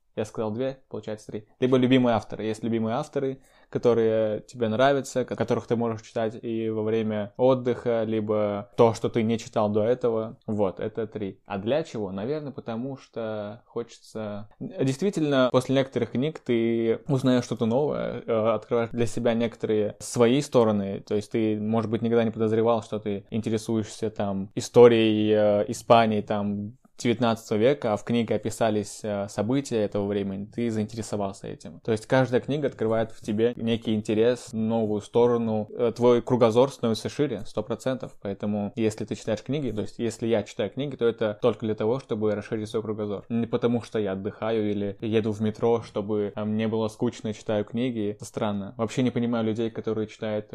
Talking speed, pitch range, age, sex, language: 165 wpm, 105-120 Hz, 20-39, male, Russian